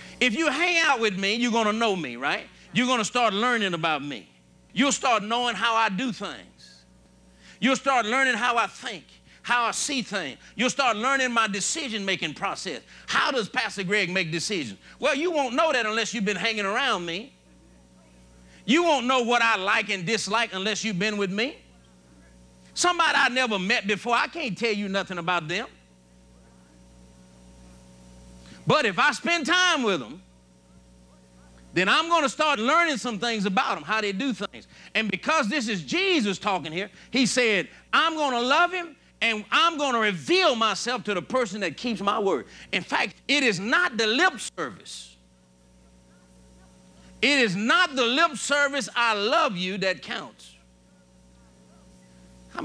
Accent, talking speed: American, 170 wpm